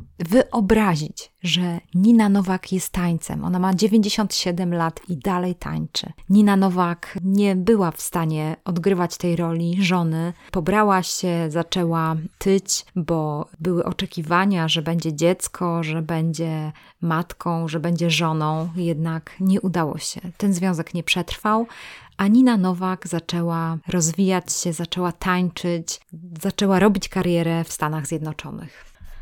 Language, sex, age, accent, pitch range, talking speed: Polish, female, 20-39, native, 165-195 Hz, 125 wpm